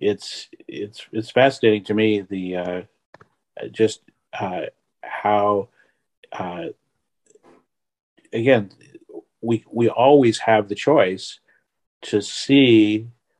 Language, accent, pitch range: English, American, 105-120 Hz